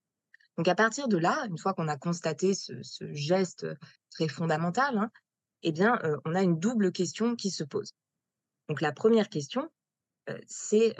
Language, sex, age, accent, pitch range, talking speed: French, female, 20-39, French, 155-200 Hz, 180 wpm